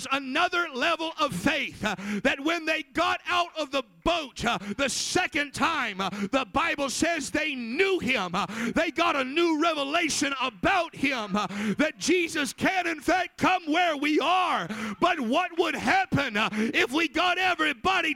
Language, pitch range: English, 255-340 Hz